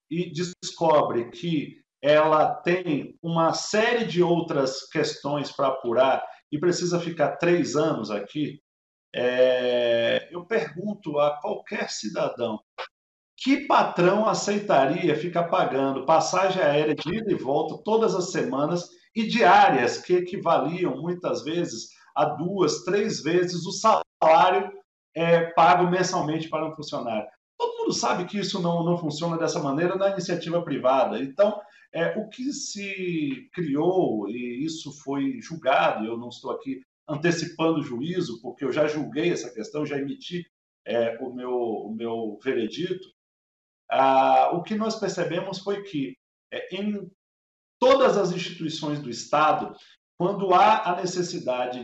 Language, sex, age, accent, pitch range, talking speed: Portuguese, male, 50-69, Brazilian, 140-180 Hz, 135 wpm